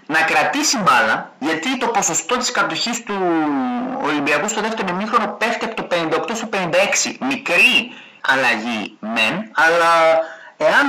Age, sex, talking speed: 30-49, male, 130 wpm